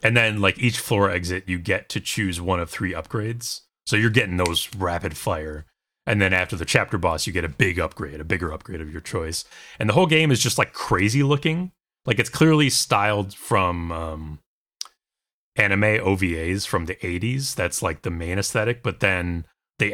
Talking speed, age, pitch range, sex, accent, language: 195 wpm, 30-49, 90-120 Hz, male, American, English